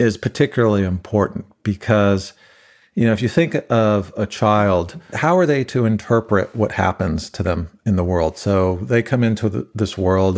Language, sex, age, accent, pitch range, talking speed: English, male, 40-59, American, 95-120 Hz, 175 wpm